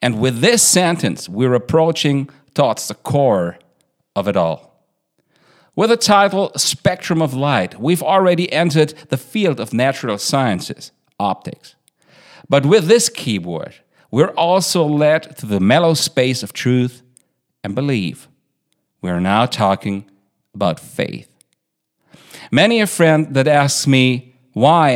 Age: 50-69